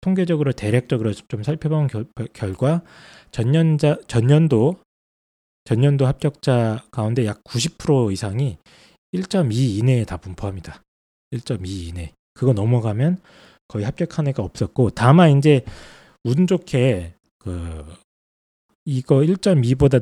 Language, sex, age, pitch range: Korean, male, 20-39, 105-150 Hz